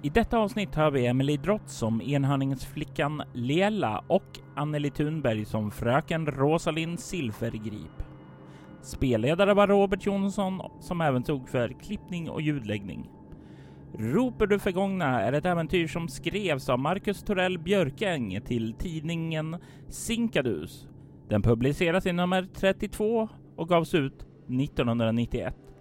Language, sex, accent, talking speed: Swedish, male, native, 120 wpm